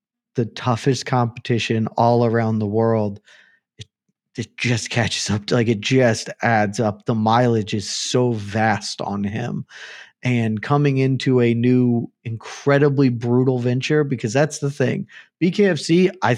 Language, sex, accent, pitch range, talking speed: English, male, American, 110-130 Hz, 140 wpm